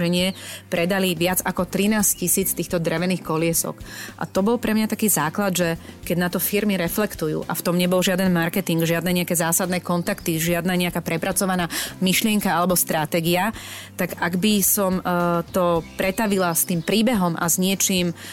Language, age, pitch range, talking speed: Slovak, 30-49, 175-195 Hz, 160 wpm